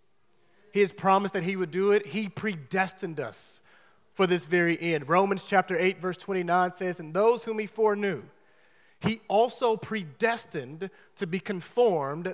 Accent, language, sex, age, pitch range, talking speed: American, English, male, 30-49, 150-200 Hz, 155 wpm